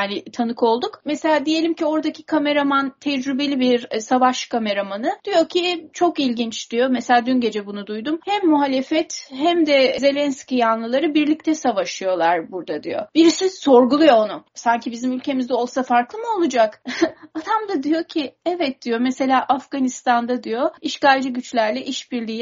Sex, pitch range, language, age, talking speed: female, 220-300 Hz, Turkish, 30-49, 145 wpm